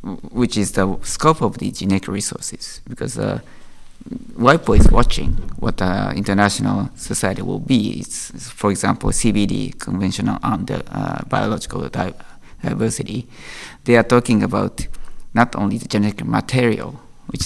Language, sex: French, male